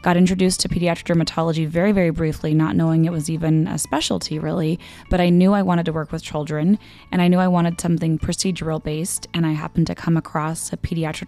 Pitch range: 155-180 Hz